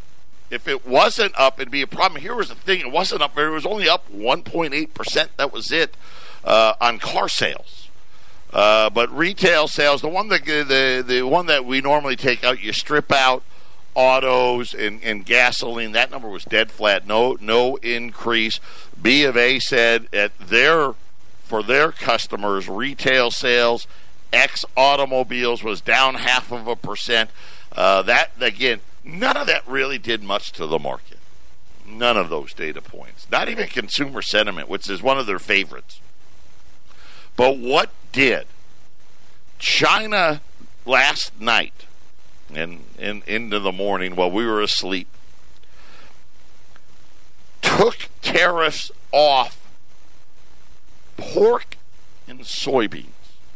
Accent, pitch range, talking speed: American, 85-130 Hz, 140 wpm